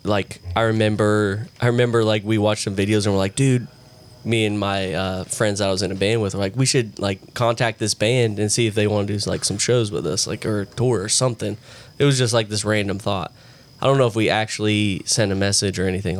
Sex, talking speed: male, 260 wpm